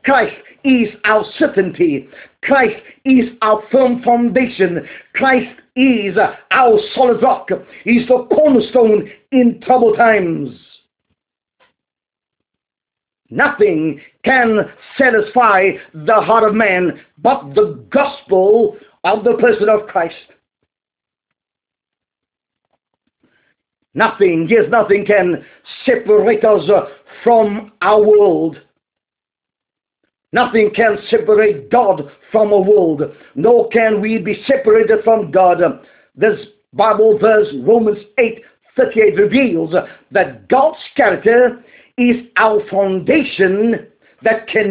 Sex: male